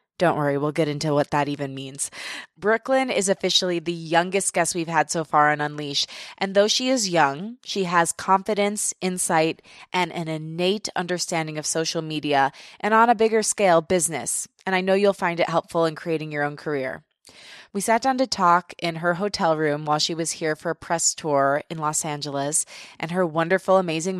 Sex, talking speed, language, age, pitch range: female, 195 wpm, English, 20-39, 150-190 Hz